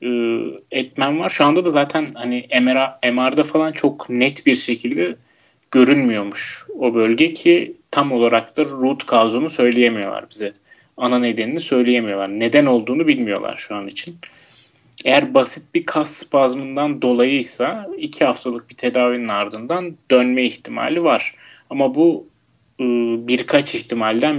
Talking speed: 125 wpm